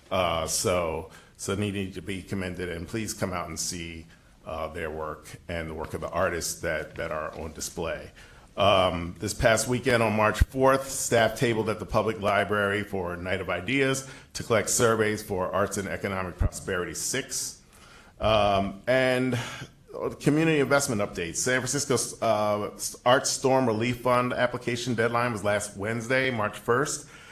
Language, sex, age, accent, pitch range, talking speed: English, male, 40-59, American, 95-115 Hz, 160 wpm